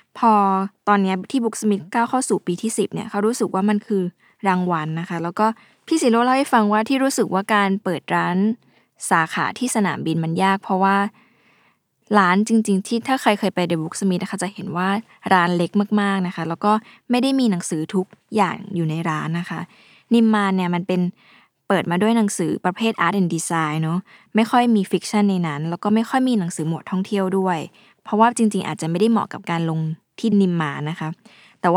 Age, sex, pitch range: 20-39, female, 175-220 Hz